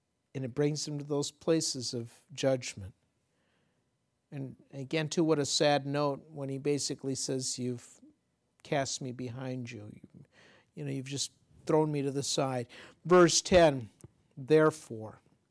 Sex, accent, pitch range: male, American, 130-160 Hz